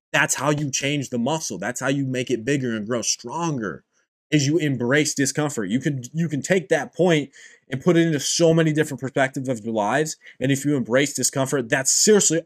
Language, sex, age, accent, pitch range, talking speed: English, male, 20-39, American, 135-170 Hz, 210 wpm